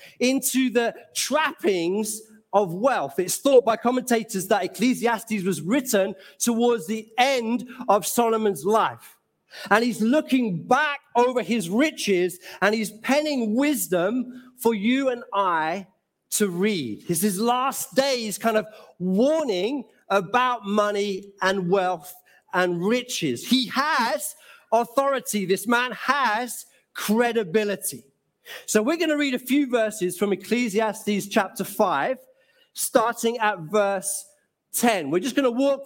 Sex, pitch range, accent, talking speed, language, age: male, 200-250 Hz, British, 130 wpm, English, 40-59